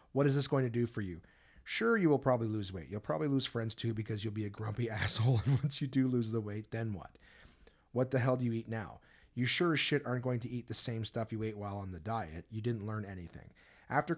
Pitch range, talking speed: 105-130 Hz, 265 wpm